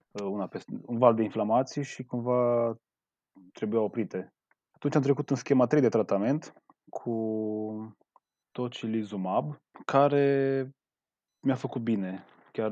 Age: 20-39